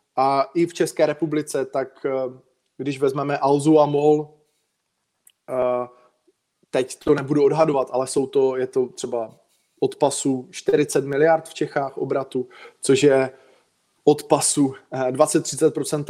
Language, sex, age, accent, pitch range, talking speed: Czech, male, 20-39, native, 135-160 Hz, 110 wpm